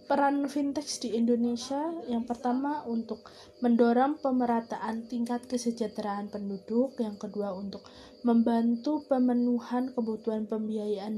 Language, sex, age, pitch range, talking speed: Indonesian, female, 20-39, 220-250 Hz, 100 wpm